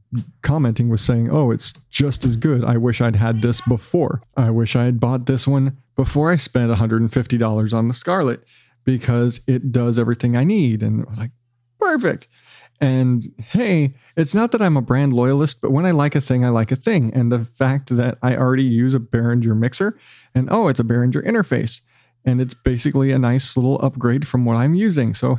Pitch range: 120-155 Hz